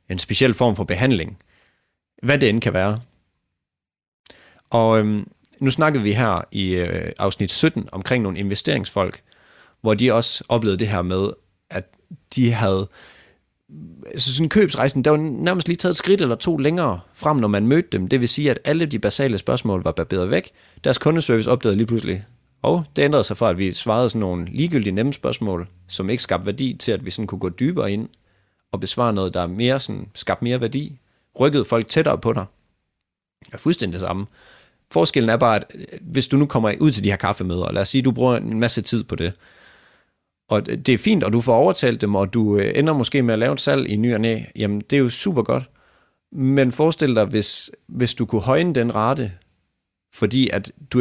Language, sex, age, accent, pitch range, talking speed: Danish, male, 30-49, native, 100-130 Hz, 205 wpm